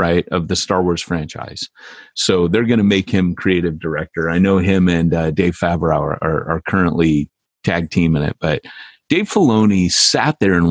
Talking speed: 195 wpm